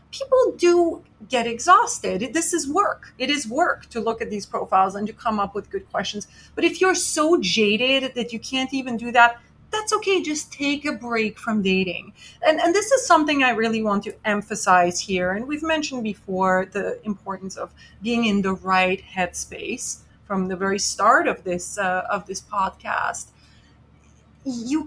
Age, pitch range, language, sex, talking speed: 30-49, 195-280 Hz, English, female, 180 wpm